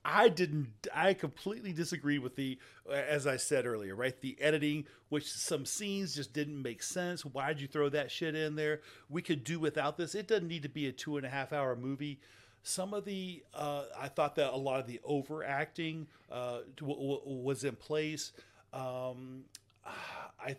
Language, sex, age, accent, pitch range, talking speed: English, male, 40-59, American, 130-155 Hz, 190 wpm